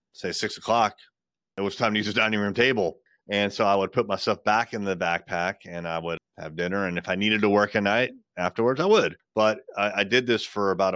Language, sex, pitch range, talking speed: English, male, 85-100 Hz, 245 wpm